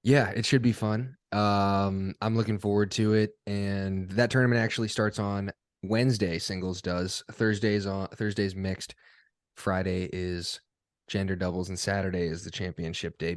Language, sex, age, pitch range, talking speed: English, male, 20-39, 95-125 Hz, 155 wpm